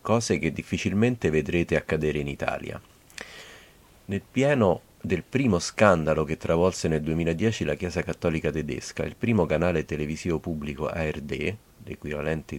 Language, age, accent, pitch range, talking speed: Italian, 40-59, native, 80-105 Hz, 130 wpm